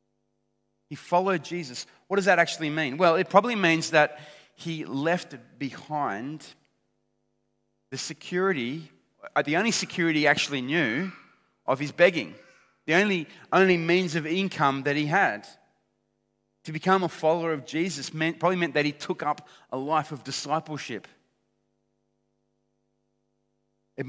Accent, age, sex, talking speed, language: Australian, 30-49, male, 135 wpm, English